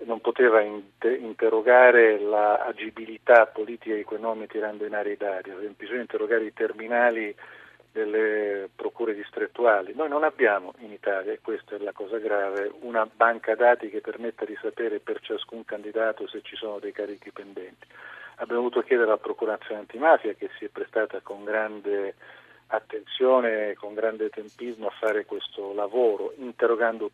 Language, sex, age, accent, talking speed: Italian, male, 40-59, native, 150 wpm